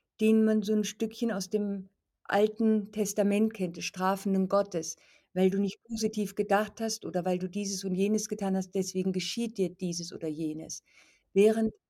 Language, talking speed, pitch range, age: German, 170 wpm, 190-220 Hz, 50-69